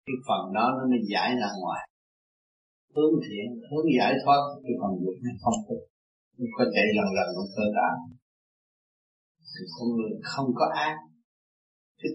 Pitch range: 120-155 Hz